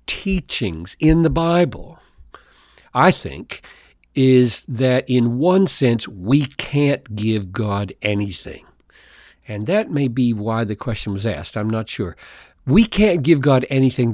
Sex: male